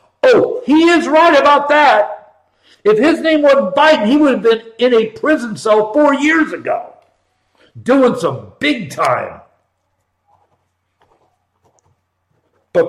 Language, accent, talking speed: English, American, 125 wpm